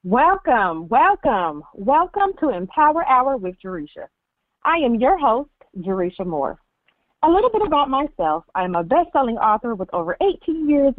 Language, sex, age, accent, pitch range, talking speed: English, female, 40-59, American, 185-280 Hz, 155 wpm